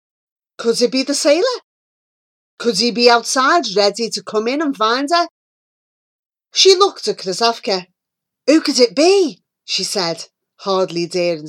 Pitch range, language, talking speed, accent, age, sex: 195-300 Hz, English, 145 wpm, British, 30-49, female